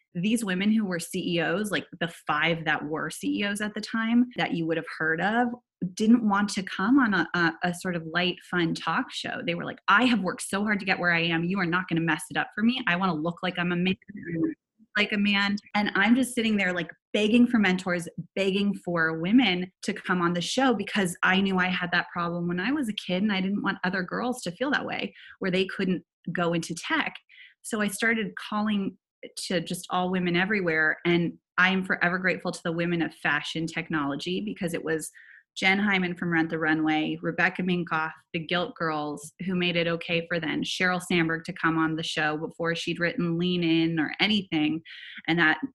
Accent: American